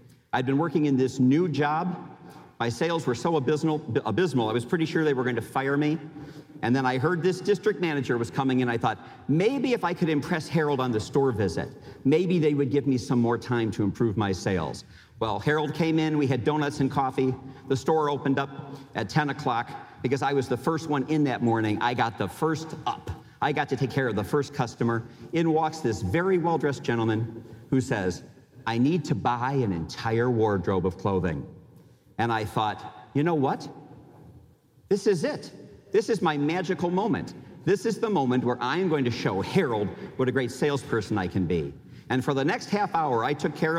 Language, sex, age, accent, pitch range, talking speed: English, male, 50-69, American, 120-160 Hz, 210 wpm